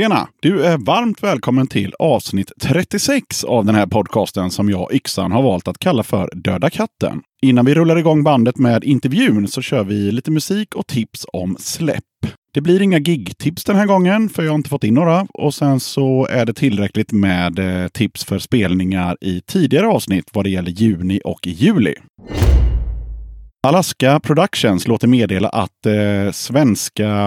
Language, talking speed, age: Swedish, 170 wpm, 30-49